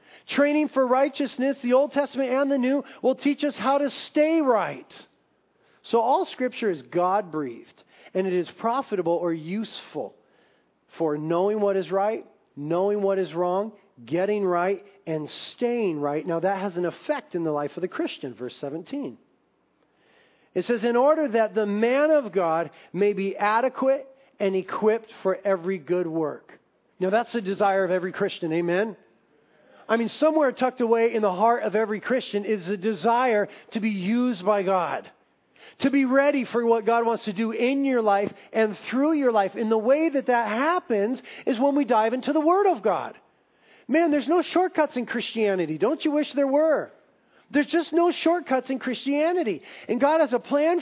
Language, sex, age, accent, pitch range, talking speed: English, male, 40-59, American, 195-280 Hz, 180 wpm